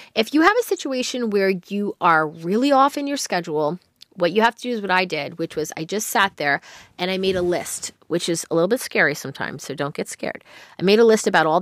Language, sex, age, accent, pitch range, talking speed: English, female, 30-49, American, 165-230 Hz, 260 wpm